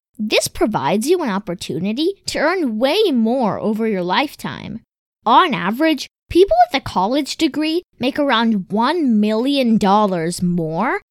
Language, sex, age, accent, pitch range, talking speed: English, female, 20-39, American, 200-320 Hz, 130 wpm